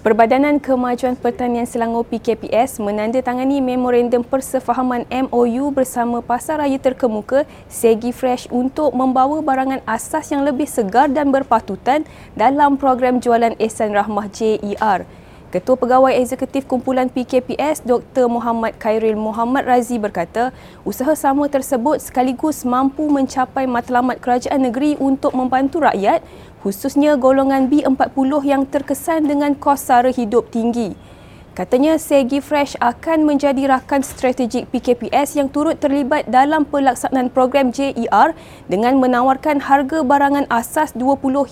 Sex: female